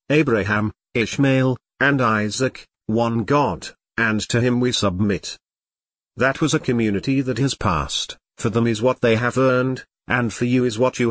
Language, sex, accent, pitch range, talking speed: English, male, British, 105-135 Hz, 165 wpm